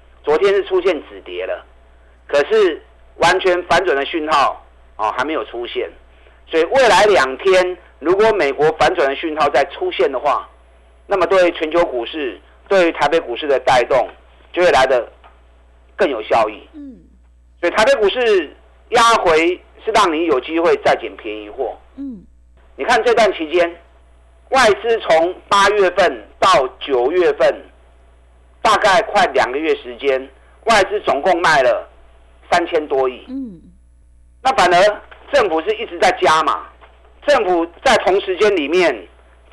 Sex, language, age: male, Chinese, 50-69